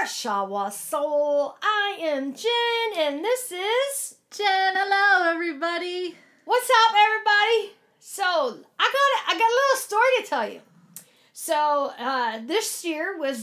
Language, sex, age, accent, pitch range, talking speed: English, female, 40-59, American, 215-315 Hz, 135 wpm